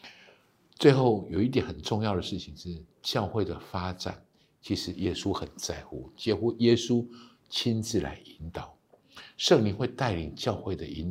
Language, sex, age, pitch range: Chinese, male, 60-79, 80-100 Hz